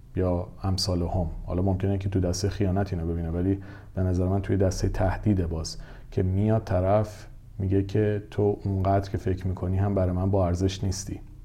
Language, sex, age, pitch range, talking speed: Persian, male, 40-59, 95-115 Hz, 180 wpm